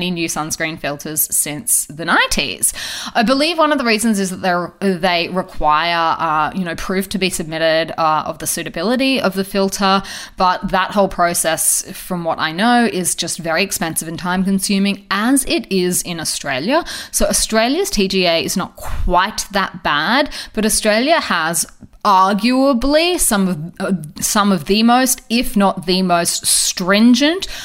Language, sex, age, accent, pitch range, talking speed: English, female, 20-39, Australian, 170-225 Hz, 160 wpm